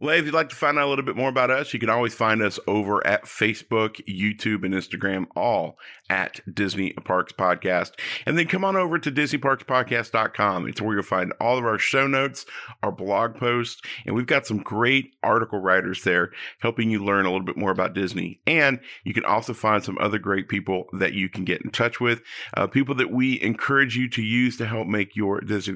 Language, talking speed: English, 220 wpm